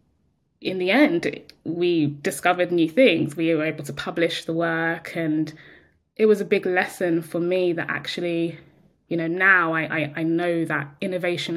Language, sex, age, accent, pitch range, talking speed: English, female, 20-39, British, 165-190 Hz, 165 wpm